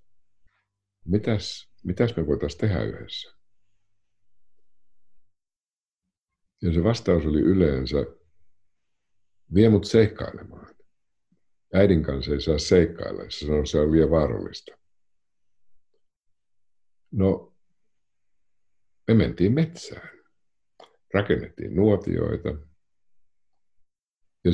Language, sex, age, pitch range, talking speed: Finnish, male, 60-79, 80-105 Hz, 75 wpm